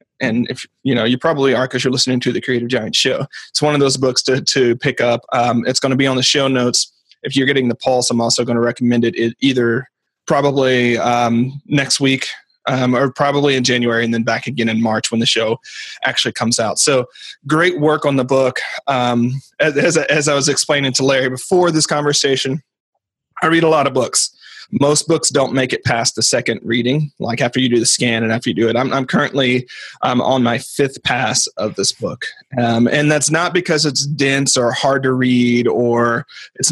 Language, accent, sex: English, American, male